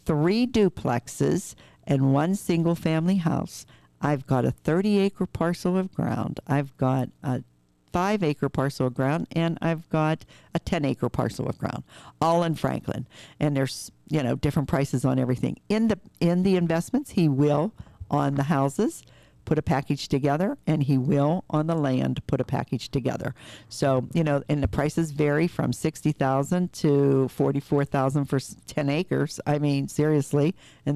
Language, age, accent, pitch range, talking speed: English, 50-69, American, 135-165 Hz, 165 wpm